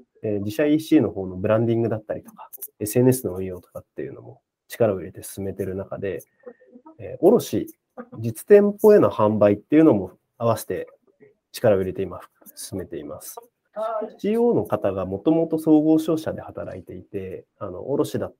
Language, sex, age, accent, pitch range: Japanese, male, 30-49, native, 105-160 Hz